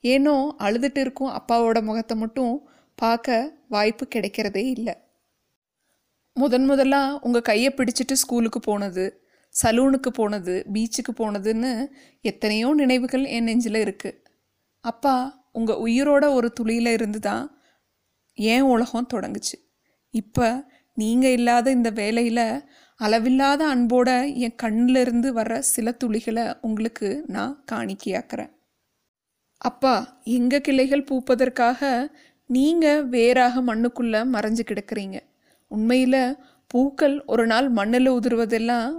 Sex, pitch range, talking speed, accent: female, 230-270 Hz, 100 wpm, native